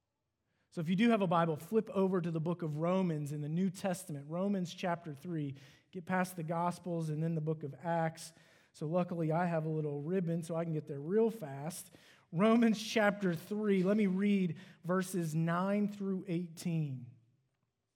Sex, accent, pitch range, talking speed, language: male, American, 160-205 Hz, 185 wpm, English